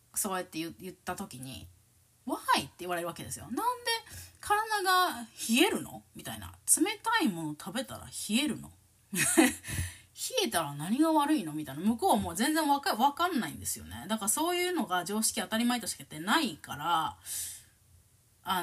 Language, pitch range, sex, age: Japanese, 155-255 Hz, female, 20-39